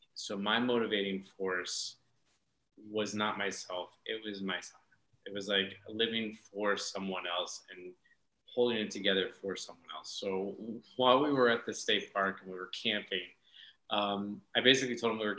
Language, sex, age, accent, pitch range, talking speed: English, male, 30-49, American, 100-120 Hz, 170 wpm